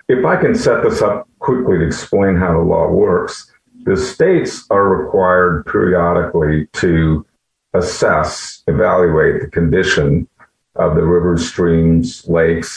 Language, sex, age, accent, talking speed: English, male, 50-69, American, 130 wpm